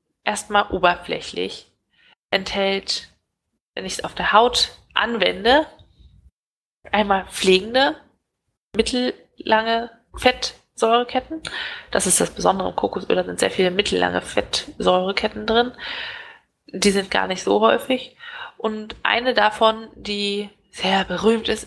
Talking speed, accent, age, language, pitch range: 110 wpm, German, 20-39, German, 175-225 Hz